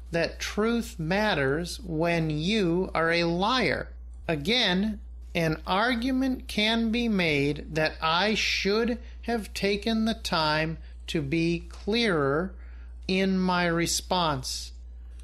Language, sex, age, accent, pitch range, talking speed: English, male, 50-69, American, 150-210 Hz, 105 wpm